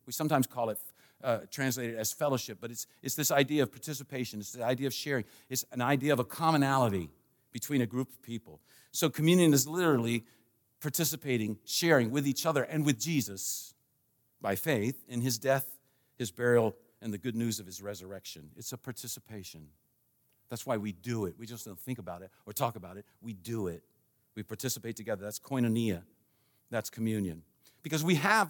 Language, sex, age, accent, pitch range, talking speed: English, male, 50-69, American, 110-145 Hz, 185 wpm